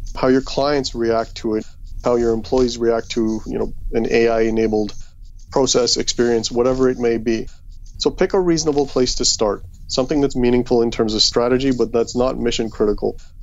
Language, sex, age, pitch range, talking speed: English, male, 30-49, 105-125 Hz, 185 wpm